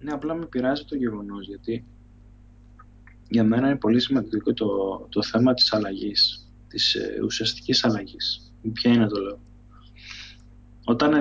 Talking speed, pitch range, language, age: 140 wpm, 110-125 Hz, Greek, 20-39